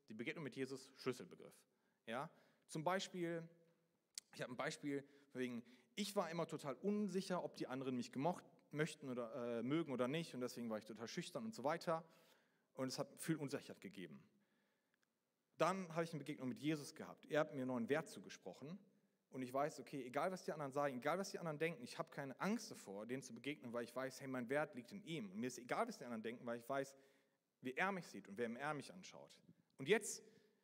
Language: German